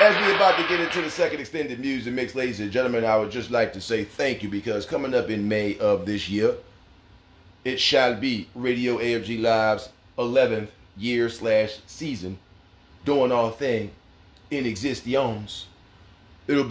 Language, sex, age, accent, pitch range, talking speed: English, male, 30-49, American, 105-125 Hz, 165 wpm